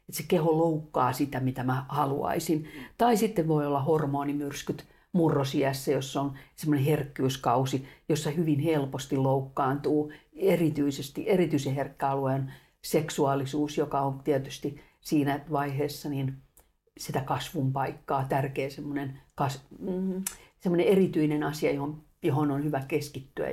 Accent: native